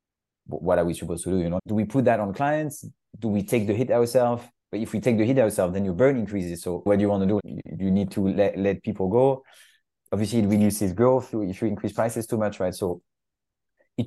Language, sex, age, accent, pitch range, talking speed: English, male, 30-49, French, 100-120 Hz, 245 wpm